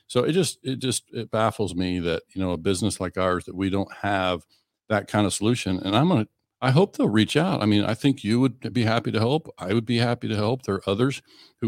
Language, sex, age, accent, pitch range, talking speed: English, male, 50-69, American, 90-115 Hz, 265 wpm